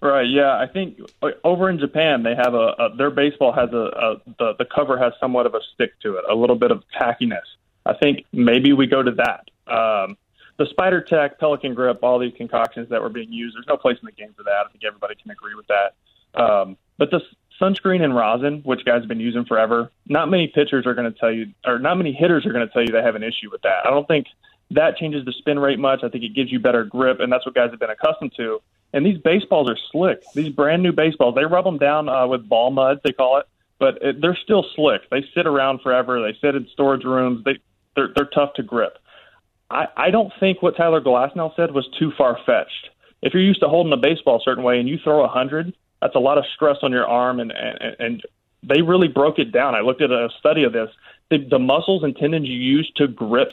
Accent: American